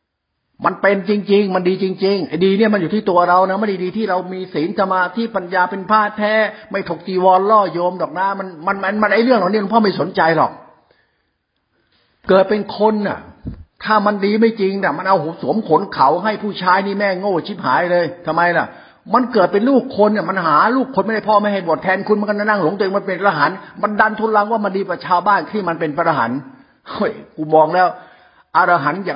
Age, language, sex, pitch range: 60-79, Thai, male, 160-210 Hz